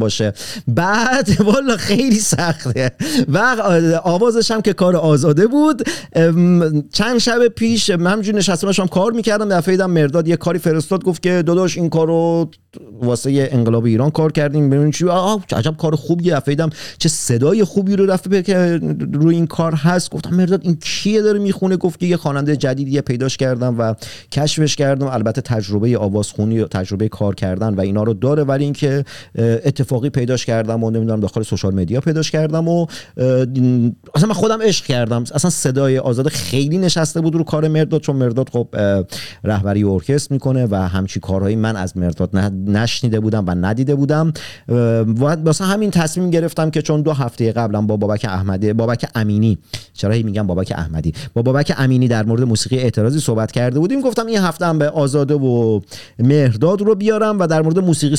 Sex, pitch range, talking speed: male, 115-175 Hz, 170 wpm